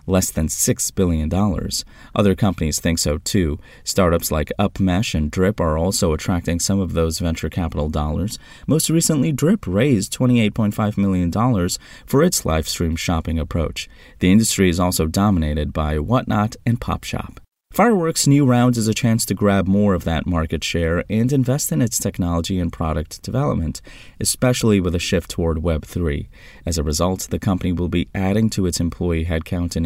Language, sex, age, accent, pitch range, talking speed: English, male, 30-49, American, 85-115 Hz, 165 wpm